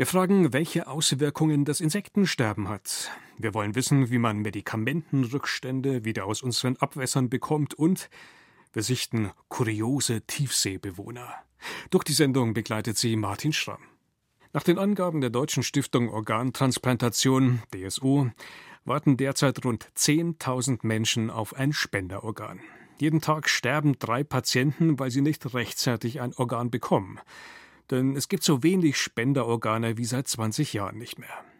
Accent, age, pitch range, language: German, 40-59, 115-150 Hz, German